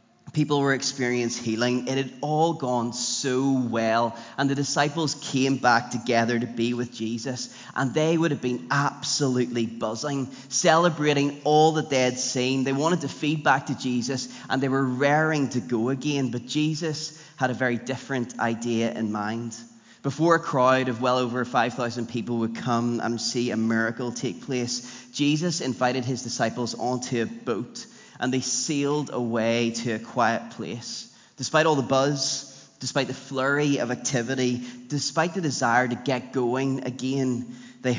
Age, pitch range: 20-39, 120-140 Hz